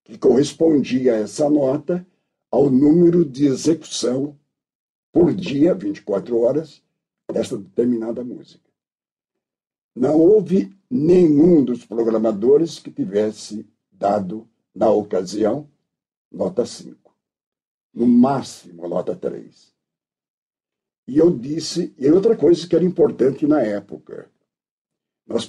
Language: Portuguese